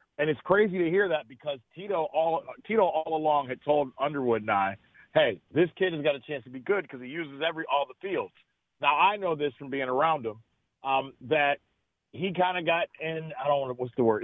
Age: 40-59